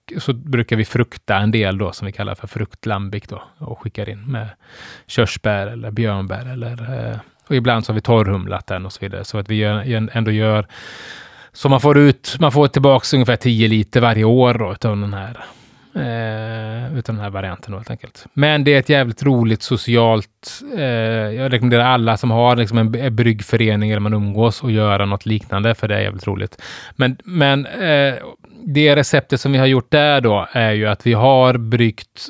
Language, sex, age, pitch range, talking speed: Swedish, male, 20-39, 110-130 Hz, 185 wpm